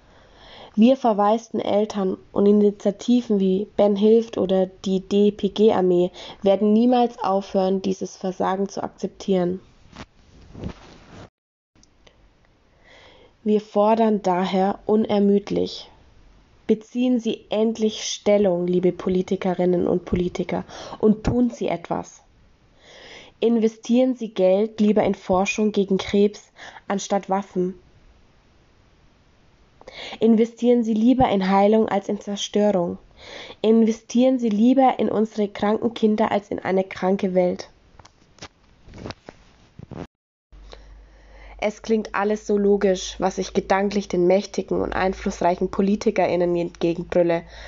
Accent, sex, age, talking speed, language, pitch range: German, female, 20-39, 100 wpm, German, 190-220 Hz